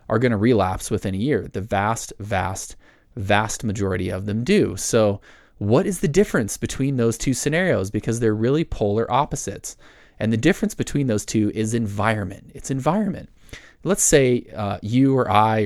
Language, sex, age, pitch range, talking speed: English, male, 20-39, 105-130 Hz, 170 wpm